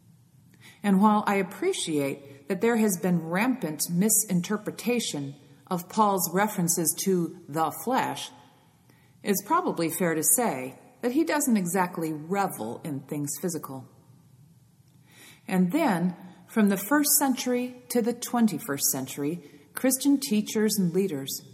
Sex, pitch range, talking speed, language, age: female, 150-220 Hz, 120 wpm, English, 40-59